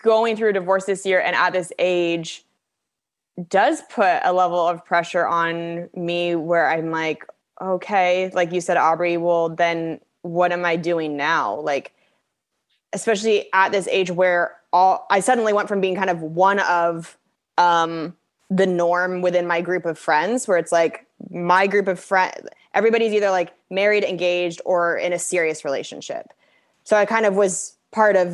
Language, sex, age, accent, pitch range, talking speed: English, female, 20-39, American, 170-195 Hz, 170 wpm